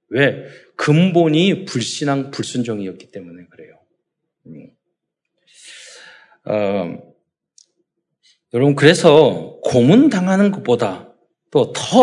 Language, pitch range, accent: Korean, 120-190 Hz, native